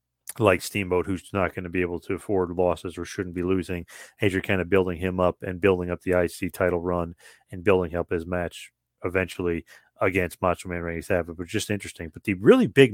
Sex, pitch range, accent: male, 90-115 Hz, American